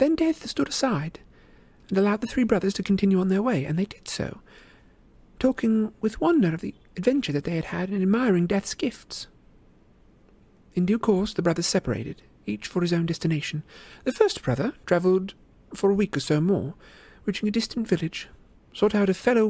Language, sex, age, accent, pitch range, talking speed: English, male, 50-69, British, 170-210 Hz, 190 wpm